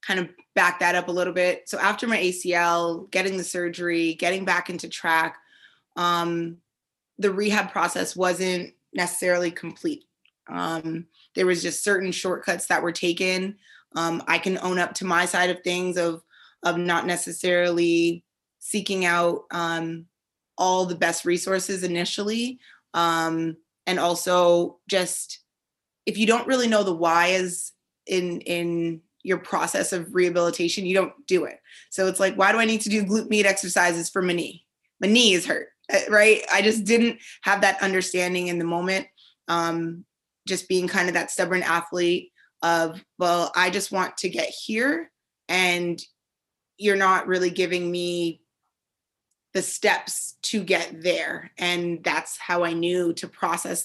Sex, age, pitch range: female, 20-39, 170-190 Hz